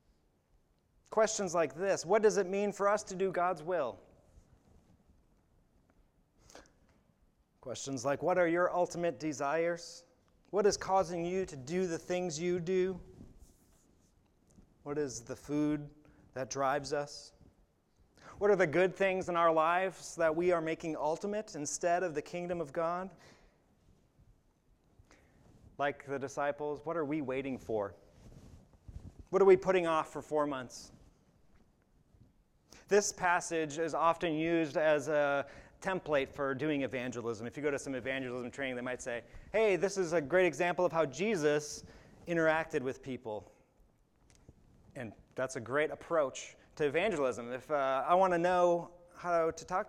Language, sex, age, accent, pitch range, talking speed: English, male, 30-49, American, 140-185 Hz, 145 wpm